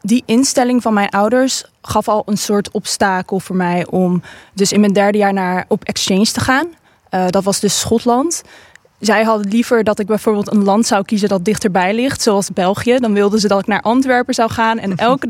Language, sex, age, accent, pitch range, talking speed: English, female, 20-39, Dutch, 195-230 Hz, 210 wpm